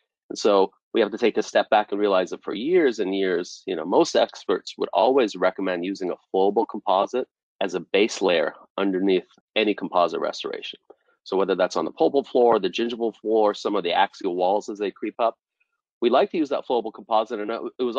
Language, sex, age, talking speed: English, male, 30-49, 215 wpm